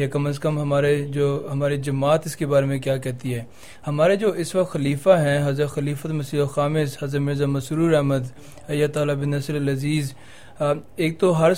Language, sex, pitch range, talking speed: Urdu, male, 140-165 Hz, 180 wpm